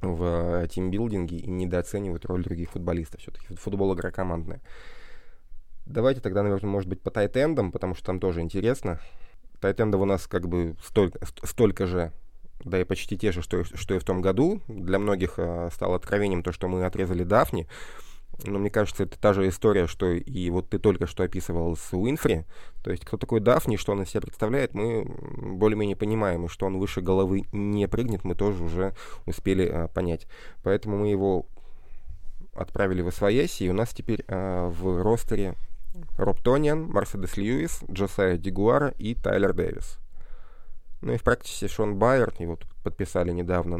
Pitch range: 90-105 Hz